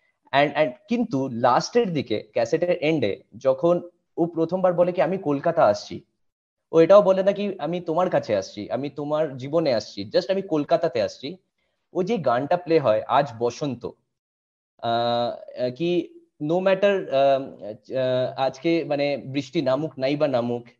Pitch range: 130-170 Hz